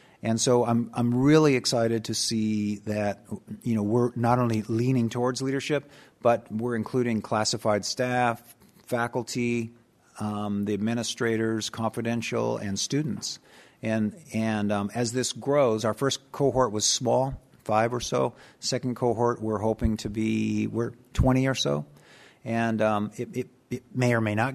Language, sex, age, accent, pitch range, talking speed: English, male, 50-69, American, 110-130 Hz, 150 wpm